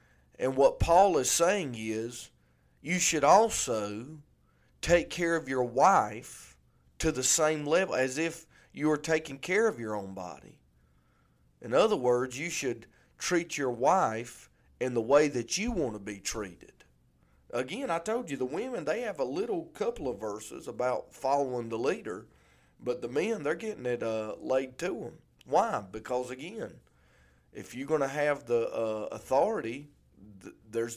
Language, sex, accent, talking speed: English, male, American, 165 wpm